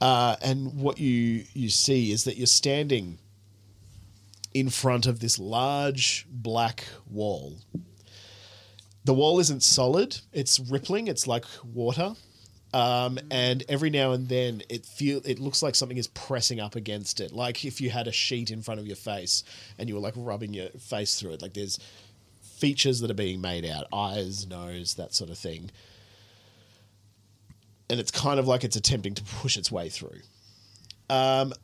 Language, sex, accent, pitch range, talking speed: English, male, Australian, 105-130 Hz, 170 wpm